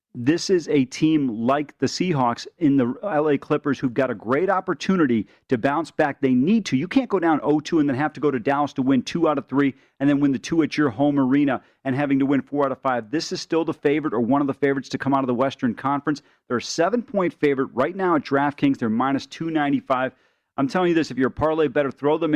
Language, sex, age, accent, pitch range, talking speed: English, male, 40-59, American, 135-165 Hz, 260 wpm